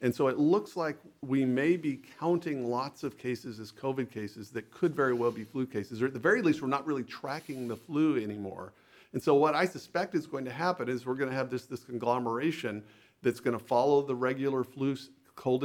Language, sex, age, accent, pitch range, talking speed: English, male, 50-69, American, 115-140 Hz, 225 wpm